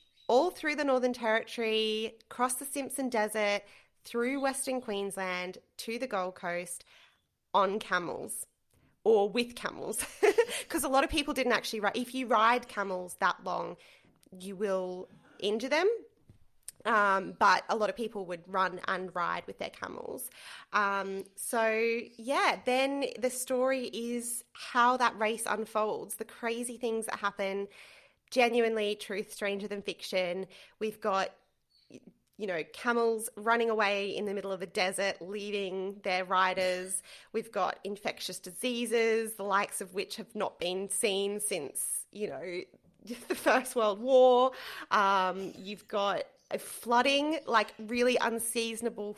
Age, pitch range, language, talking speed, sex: 20-39, 200-240 Hz, English, 140 wpm, female